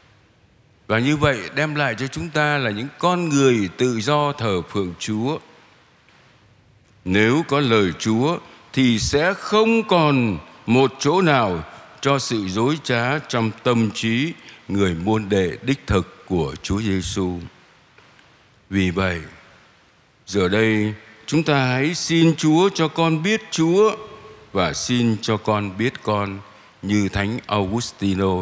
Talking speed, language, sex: 135 wpm, Vietnamese, male